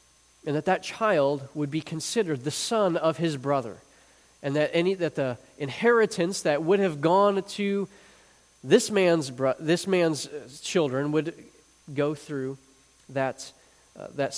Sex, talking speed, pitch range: male, 145 wpm, 145-200 Hz